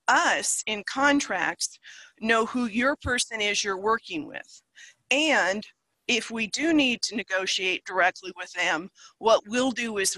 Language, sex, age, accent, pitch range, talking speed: English, female, 40-59, American, 210-275 Hz, 145 wpm